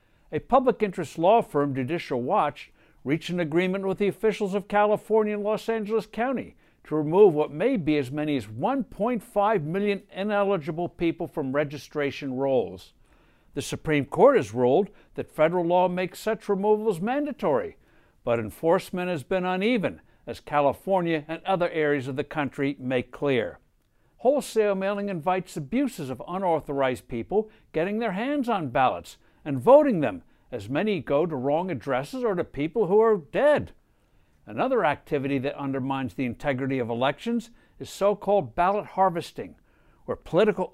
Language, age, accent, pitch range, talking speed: English, 60-79, American, 145-205 Hz, 150 wpm